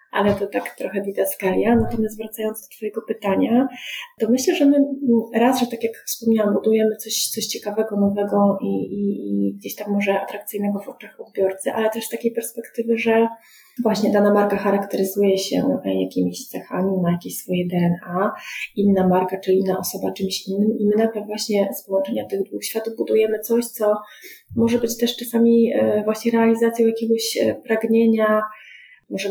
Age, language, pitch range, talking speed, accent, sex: 30-49, Polish, 195-230 Hz, 165 wpm, native, female